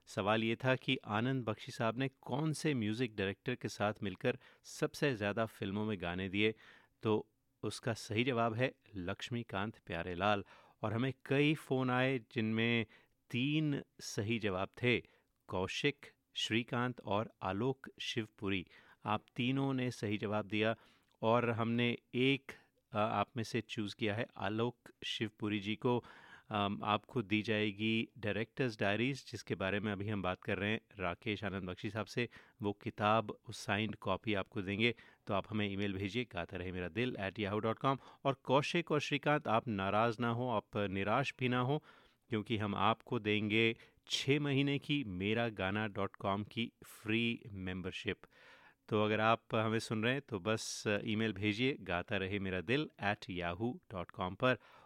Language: Hindi